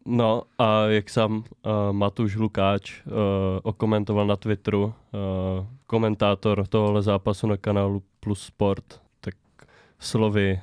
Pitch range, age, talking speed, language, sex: 100-115 Hz, 20-39, 120 wpm, Czech, male